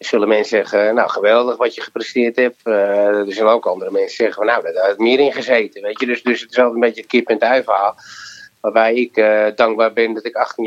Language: Dutch